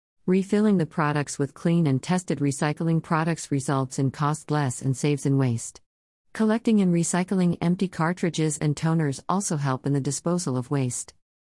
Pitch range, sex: 130-165 Hz, female